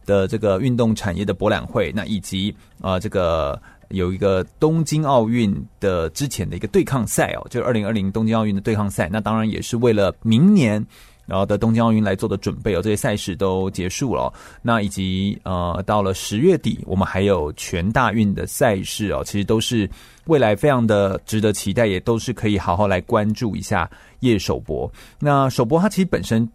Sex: male